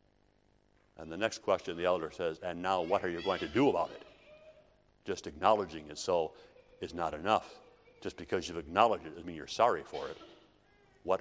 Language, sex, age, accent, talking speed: English, male, 60-79, American, 195 wpm